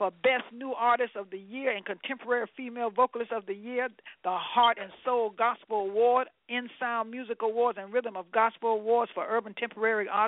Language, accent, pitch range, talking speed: English, American, 205-260 Hz, 185 wpm